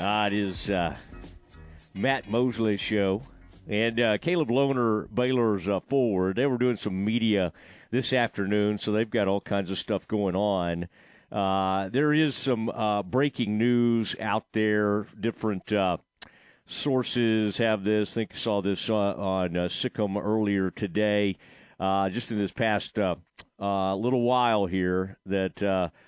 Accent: American